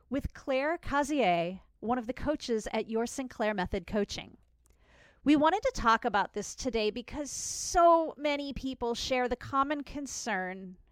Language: English